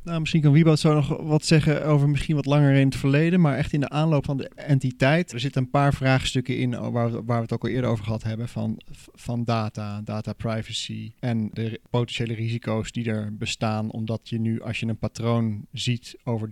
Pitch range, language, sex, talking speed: 110-130 Hz, Dutch, male, 220 wpm